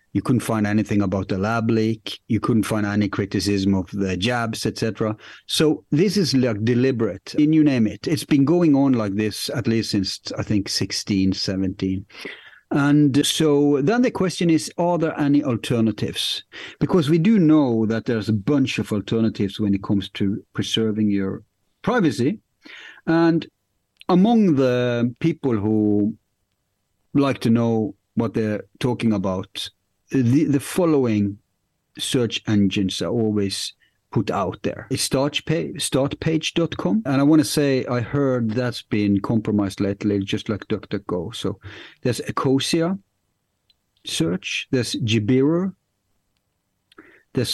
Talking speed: 140 wpm